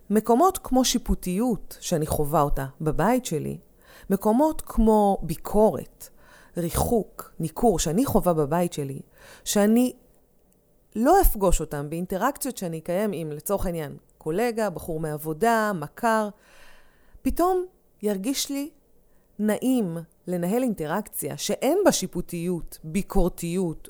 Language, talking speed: Hebrew, 105 wpm